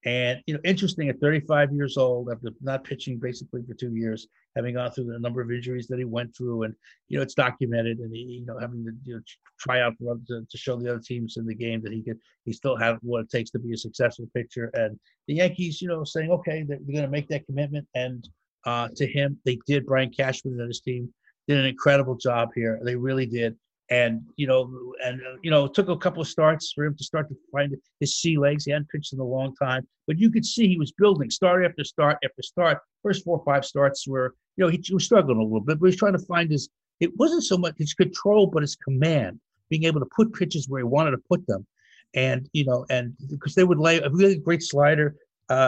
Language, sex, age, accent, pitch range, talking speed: English, male, 60-79, American, 125-155 Hz, 255 wpm